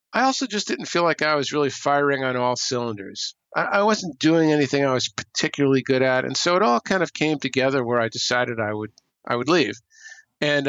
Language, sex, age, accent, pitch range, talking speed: English, male, 50-69, American, 115-150 Hz, 225 wpm